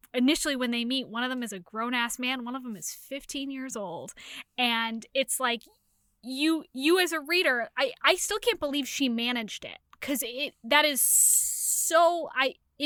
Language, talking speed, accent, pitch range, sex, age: English, 185 wpm, American, 230-290 Hz, female, 10-29